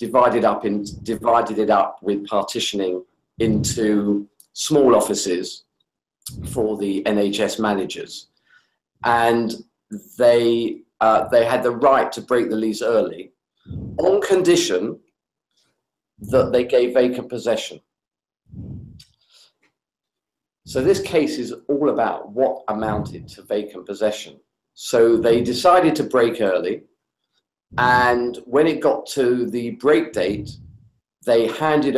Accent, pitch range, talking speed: British, 105-140 Hz, 110 wpm